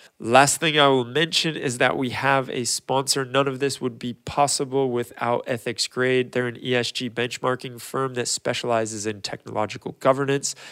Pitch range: 115-140 Hz